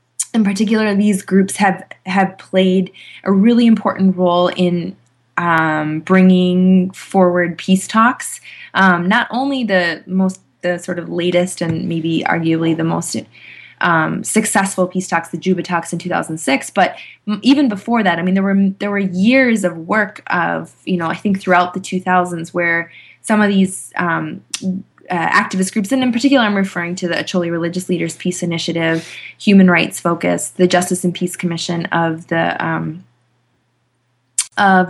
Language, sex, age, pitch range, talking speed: English, female, 20-39, 170-195 Hz, 165 wpm